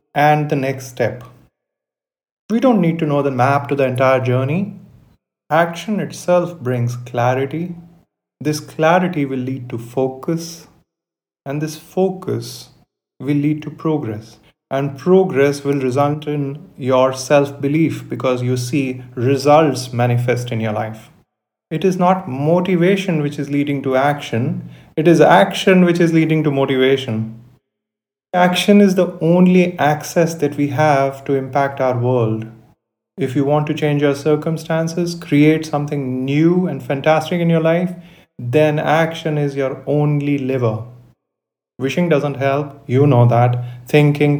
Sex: male